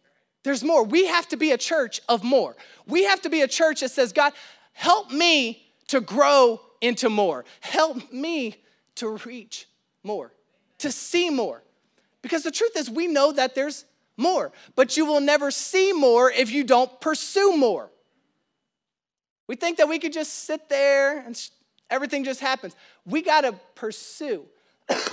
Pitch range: 245-315 Hz